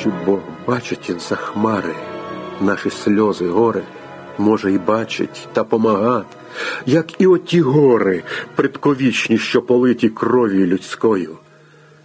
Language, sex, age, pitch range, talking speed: Ukrainian, male, 50-69, 105-155 Hz, 105 wpm